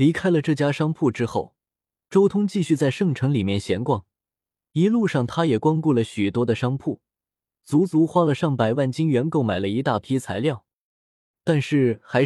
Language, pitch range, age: Chinese, 110-165 Hz, 20-39